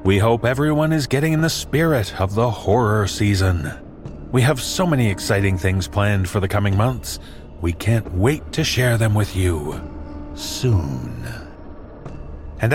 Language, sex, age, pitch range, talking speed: English, male, 40-59, 90-130 Hz, 155 wpm